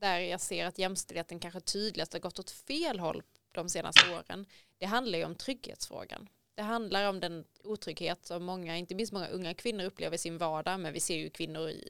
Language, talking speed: Swedish, 210 wpm